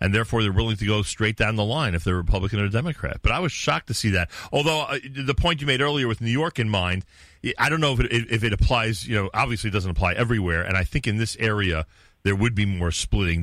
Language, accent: English, American